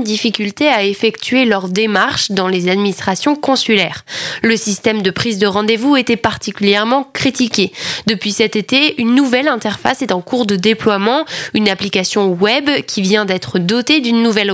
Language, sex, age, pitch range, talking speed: French, female, 10-29, 200-255 Hz, 155 wpm